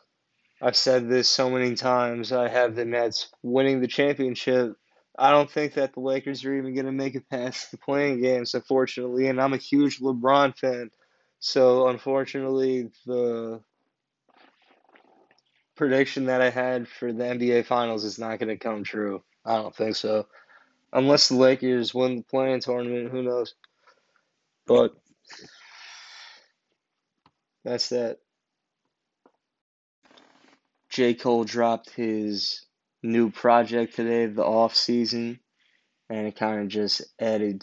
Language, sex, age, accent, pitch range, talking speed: English, male, 20-39, American, 105-130 Hz, 135 wpm